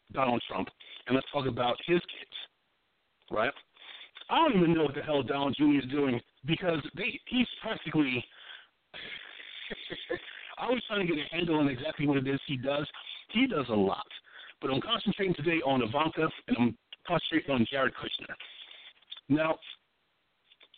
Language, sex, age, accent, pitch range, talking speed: English, male, 50-69, American, 130-175 Hz, 155 wpm